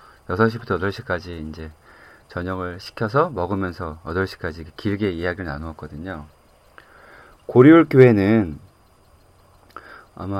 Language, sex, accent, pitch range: Korean, male, native, 90-120 Hz